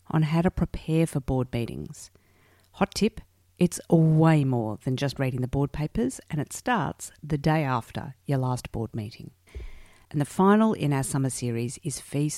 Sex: female